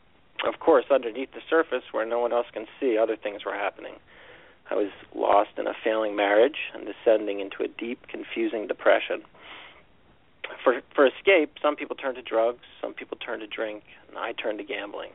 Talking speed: 185 wpm